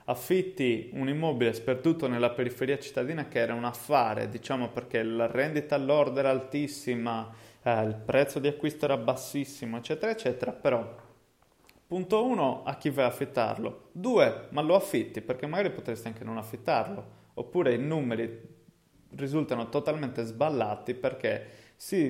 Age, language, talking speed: 20-39, Italian, 145 wpm